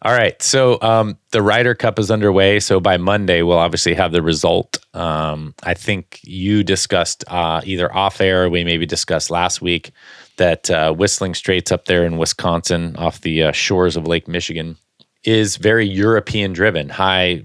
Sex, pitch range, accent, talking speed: male, 80-100 Hz, American, 175 wpm